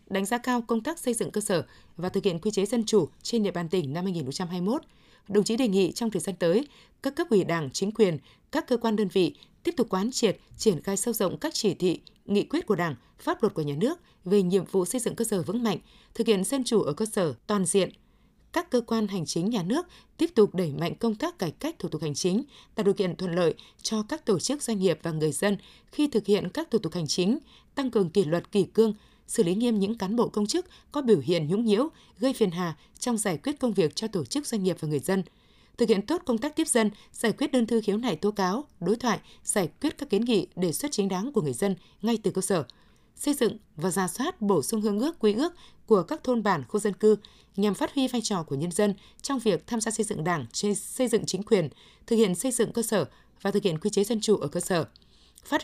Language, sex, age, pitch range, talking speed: Vietnamese, female, 20-39, 185-235 Hz, 260 wpm